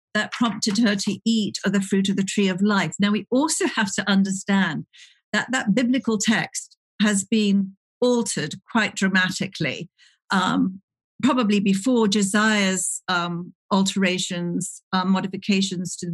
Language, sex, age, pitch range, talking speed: English, female, 50-69, 190-230 Hz, 140 wpm